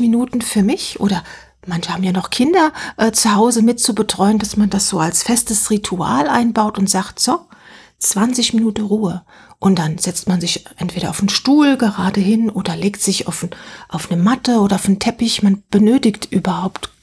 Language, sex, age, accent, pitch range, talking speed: German, female, 40-59, German, 195-230 Hz, 185 wpm